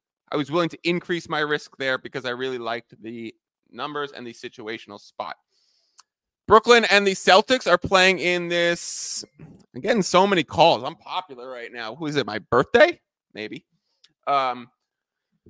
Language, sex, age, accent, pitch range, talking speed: English, male, 30-49, American, 125-180 Hz, 165 wpm